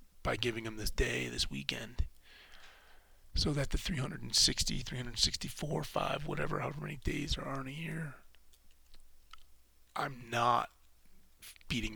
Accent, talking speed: American, 115 wpm